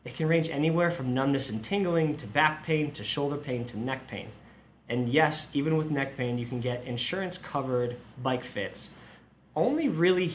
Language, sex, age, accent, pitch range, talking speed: English, male, 20-39, American, 120-155 Hz, 180 wpm